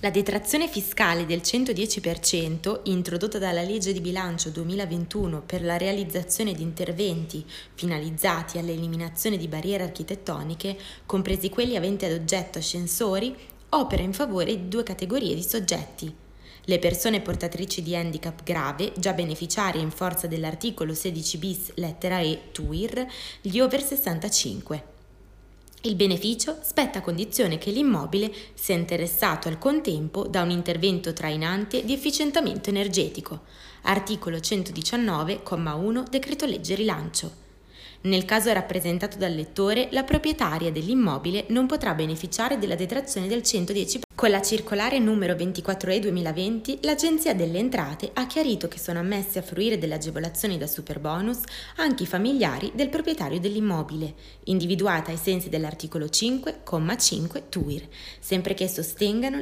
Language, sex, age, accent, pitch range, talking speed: Italian, female, 20-39, native, 165-215 Hz, 130 wpm